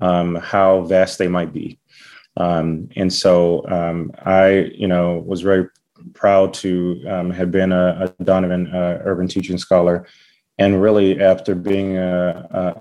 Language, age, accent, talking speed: English, 30-49, American, 150 wpm